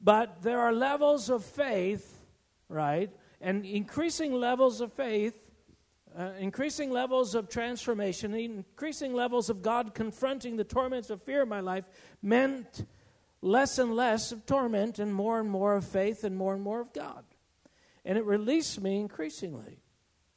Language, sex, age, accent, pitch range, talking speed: English, male, 60-79, American, 165-235 Hz, 155 wpm